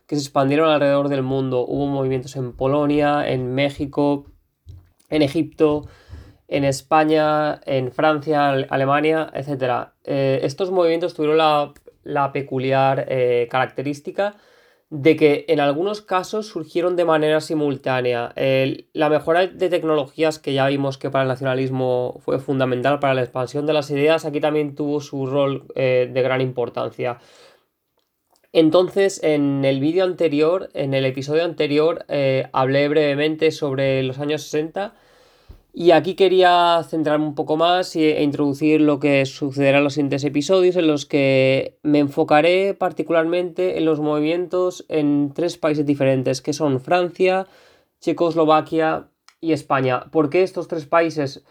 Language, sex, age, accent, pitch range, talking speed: Spanish, male, 20-39, Spanish, 135-160 Hz, 145 wpm